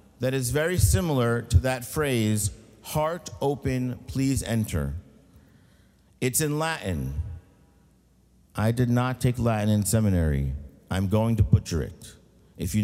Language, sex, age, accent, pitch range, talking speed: English, male, 50-69, American, 95-135 Hz, 130 wpm